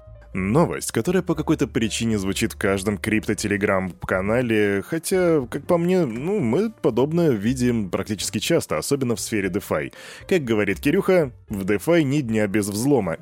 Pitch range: 105-145 Hz